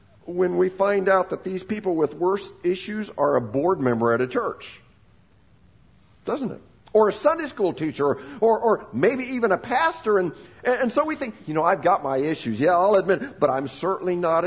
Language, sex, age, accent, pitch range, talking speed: English, male, 50-69, American, 125-195 Hz, 205 wpm